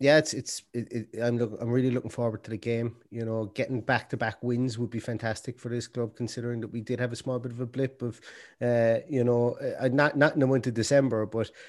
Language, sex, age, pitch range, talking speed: English, male, 30-49, 110-135 Hz, 255 wpm